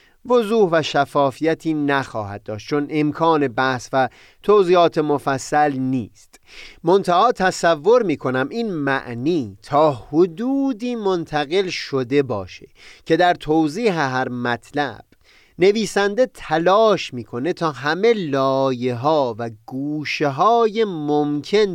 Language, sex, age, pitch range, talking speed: Persian, male, 30-49, 130-180 Hz, 105 wpm